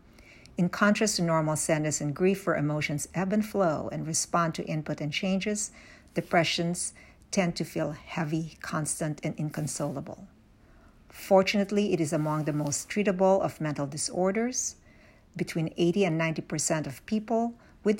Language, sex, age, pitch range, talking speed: English, female, 60-79, 160-205 Hz, 145 wpm